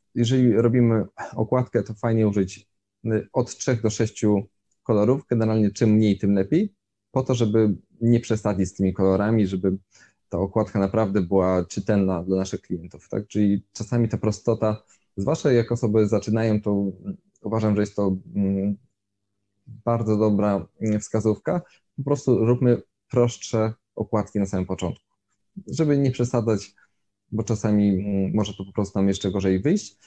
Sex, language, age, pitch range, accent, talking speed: male, Polish, 20-39, 100-115 Hz, native, 140 wpm